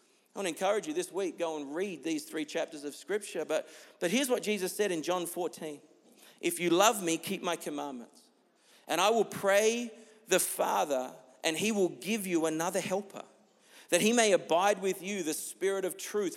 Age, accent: 40-59, Australian